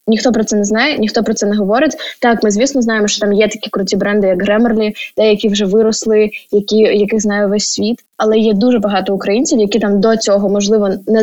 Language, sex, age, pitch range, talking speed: Ukrainian, female, 10-29, 205-230 Hz, 220 wpm